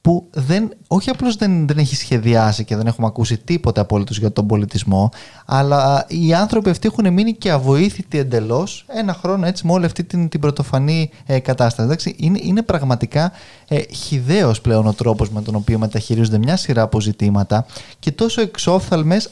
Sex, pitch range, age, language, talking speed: male, 120-175 Hz, 20-39, Greek, 170 wpm